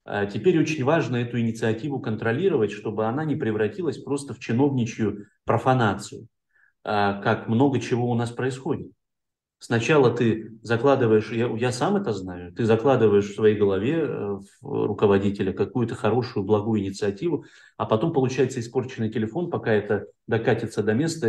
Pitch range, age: 105-125 Hz, 30-49